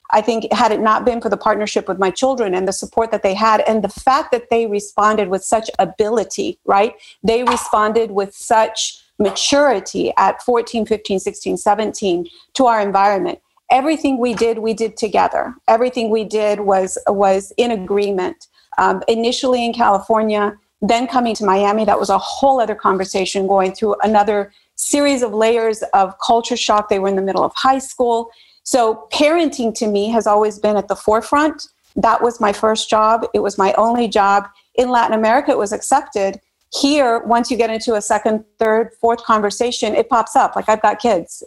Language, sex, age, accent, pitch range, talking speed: English, female, 40-59, American, 205-240 Hz, 185 wpm